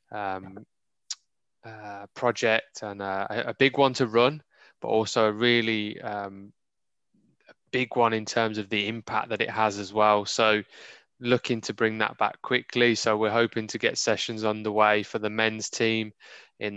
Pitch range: 105-120 Hz